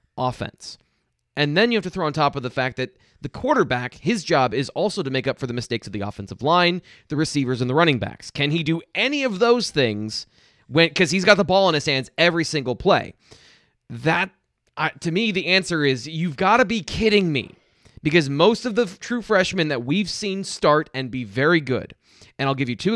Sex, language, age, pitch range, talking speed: male, English, 20-39, 120-170 Hz, 225 wpm